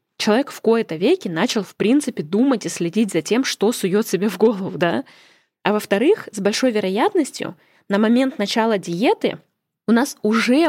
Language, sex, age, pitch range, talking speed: Russian, female, 20-39, 200-255 Hz, 170 wpm